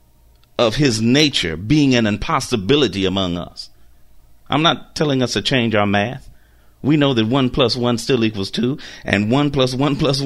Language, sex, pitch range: English, male, 95-150 Hz